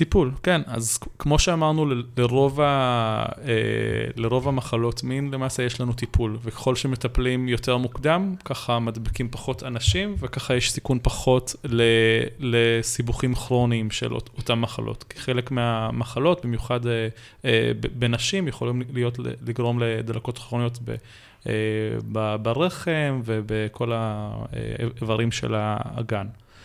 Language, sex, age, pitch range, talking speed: Hebrew, male, 20-39, 115-130 Hz, 110 wpm